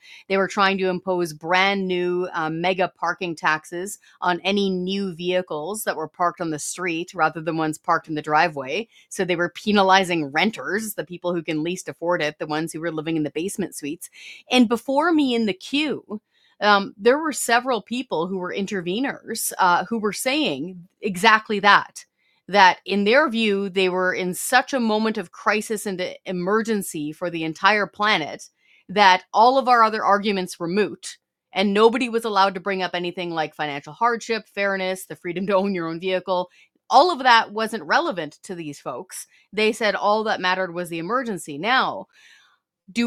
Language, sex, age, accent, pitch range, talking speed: English, female, 30-49, American, 175-220 Hz, 185 wpm